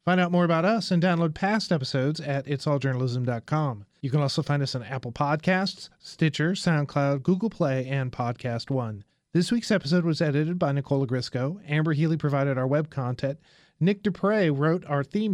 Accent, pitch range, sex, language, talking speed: American, 140-175 Hz, male, English, 175 wpm